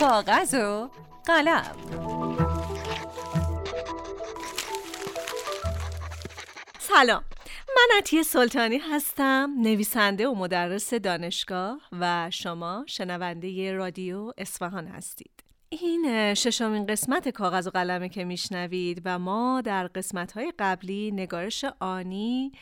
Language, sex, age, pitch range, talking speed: Persian, female, 30-49, 180-255 Hz, 90 wpm